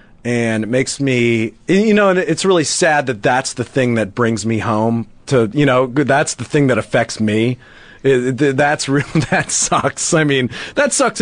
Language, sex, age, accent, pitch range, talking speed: English, male, 30-49, American, 120-170 Hz, 185 wpm